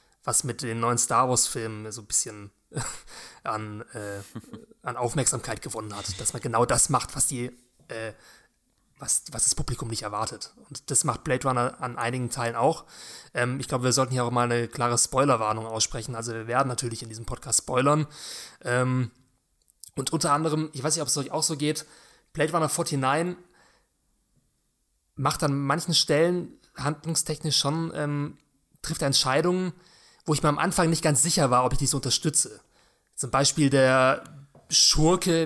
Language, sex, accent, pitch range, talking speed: German, male, German, 120-145 Hz, 170 wpm